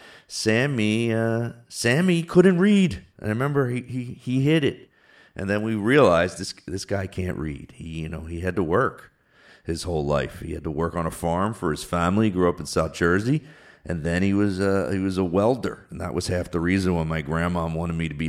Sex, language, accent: male, English, American